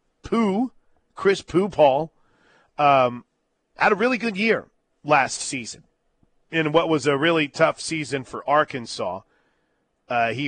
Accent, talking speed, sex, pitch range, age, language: American, 130 wpm, male, 135-165 Hz, 40-59, English